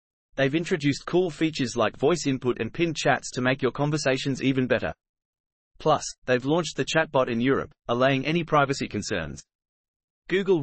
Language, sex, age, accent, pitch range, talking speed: English, male, 30-49, Australian, 130-155 Hz, 160 wpm